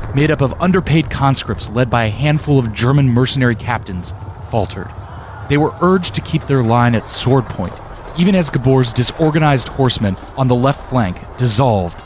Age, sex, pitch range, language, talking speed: 30-49, male, 95-135 Hz, English, 170 wpm